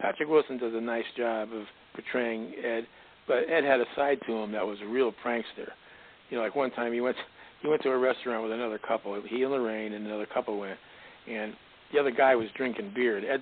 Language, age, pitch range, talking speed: English, 60-79, 110-130 Hz, 230 wpm